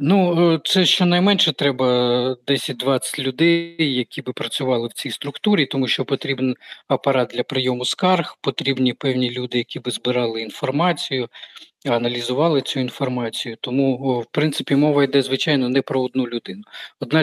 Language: Ukrainian